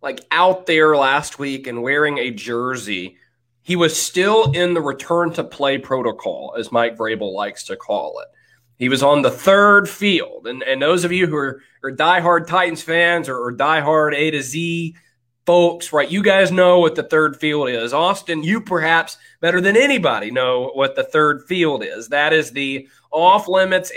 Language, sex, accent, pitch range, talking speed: English, male, American, 130-175 Hz, 180 wpm